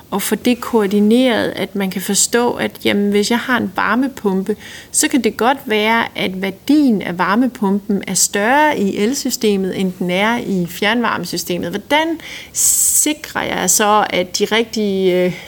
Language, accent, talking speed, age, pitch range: Danish, native, 150 wpm, 30-49, 190-225 Hz